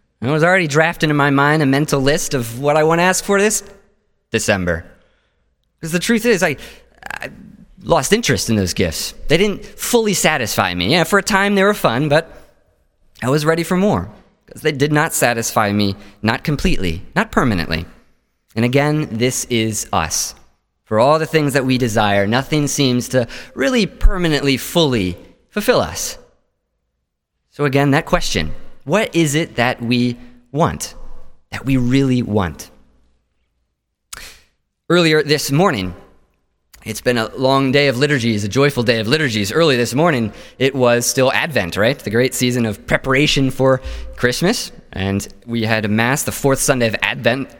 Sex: male